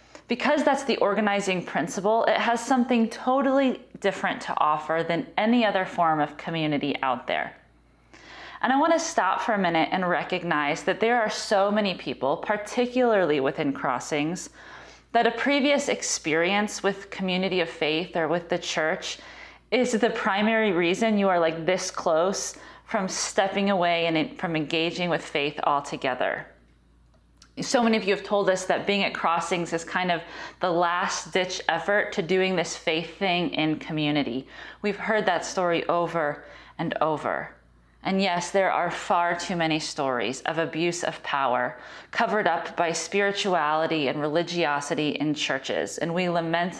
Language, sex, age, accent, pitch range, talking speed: English, female, 30-49, American, 160-200 Hz, 160 wpm